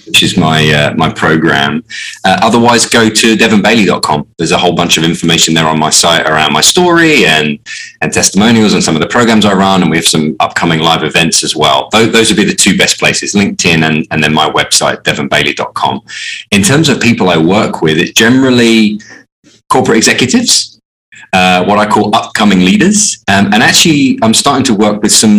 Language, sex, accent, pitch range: English, male, British, 85-115 Hz